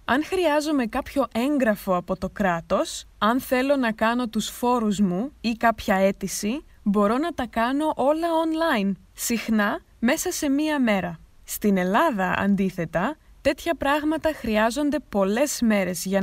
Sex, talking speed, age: female, 135 wpm, 20-39